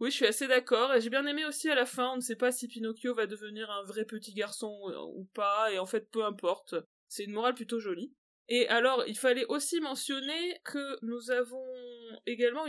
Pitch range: 215-270 Hz